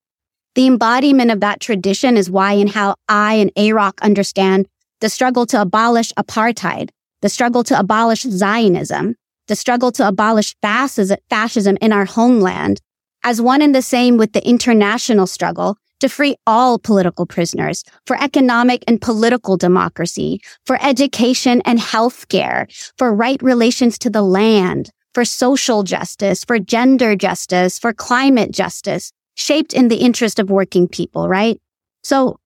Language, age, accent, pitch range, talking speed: English, 30-49, American, 200-250 Hz, 145 wpm